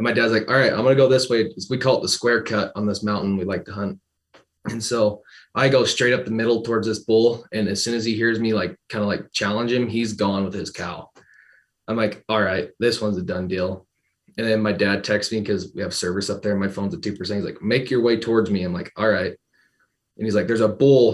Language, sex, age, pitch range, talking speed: English, male, 20-39, 105-115 Hz, 270 wpm